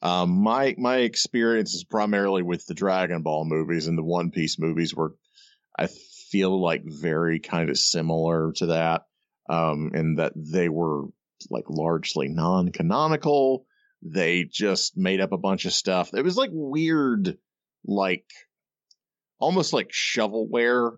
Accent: American